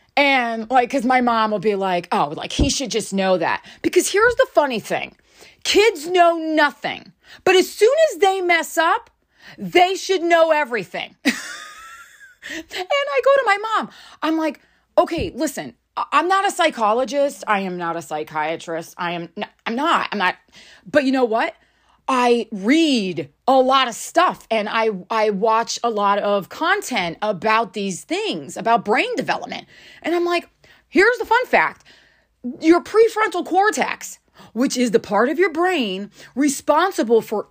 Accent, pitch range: American, 200-335 Hz